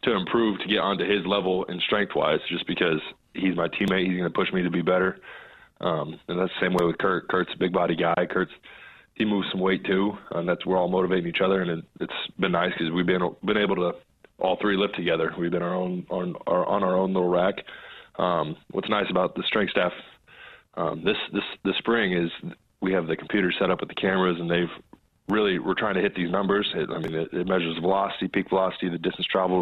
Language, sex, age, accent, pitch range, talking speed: English, male, 20-39, American, 85-95 Hz, 235 wpm